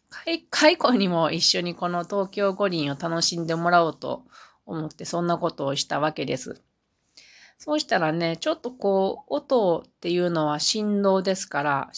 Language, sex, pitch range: Japanese, female, 155-200 Hz